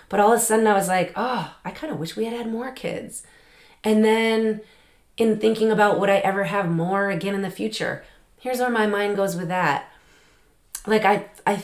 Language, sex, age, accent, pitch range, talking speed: English, female, 30-49, American, 180-230 Hz, 215 wpm